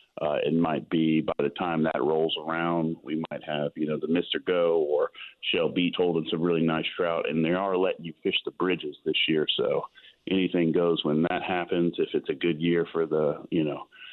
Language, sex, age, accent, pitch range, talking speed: English, male, 40-59, American, 80-100 Hz, 215 wpm